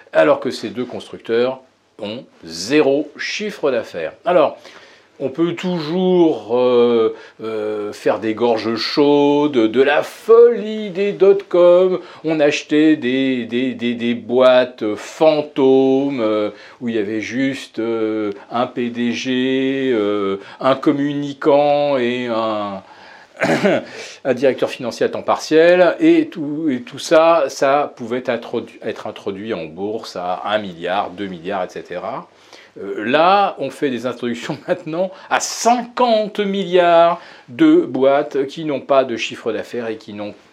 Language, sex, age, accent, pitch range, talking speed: French, male, 40-59, French, 120-175 Hz, 135 wpm